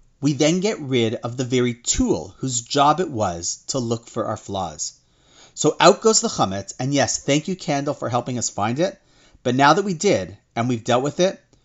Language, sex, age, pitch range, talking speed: English, male, 30-49, 130-180 Hz, 215 wpm